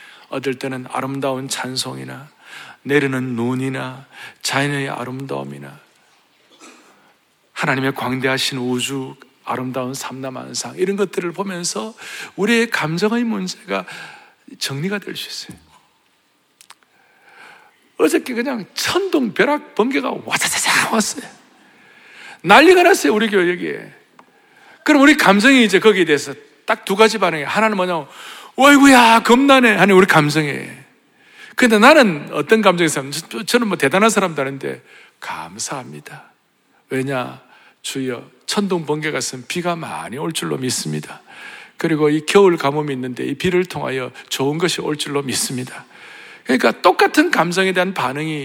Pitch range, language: 135-225 Hz, Korean